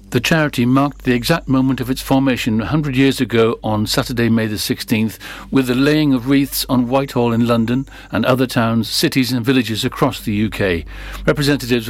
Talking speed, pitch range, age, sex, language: 180 wpm, 115-135 Hz, 60-79, male, English